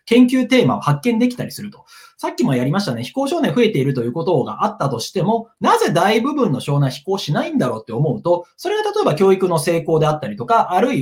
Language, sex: Japanese, male